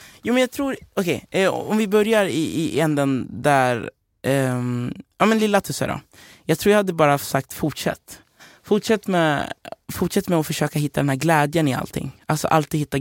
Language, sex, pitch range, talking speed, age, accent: Swedish, male, 120-145 Hz, 195 wpm, 20-39, native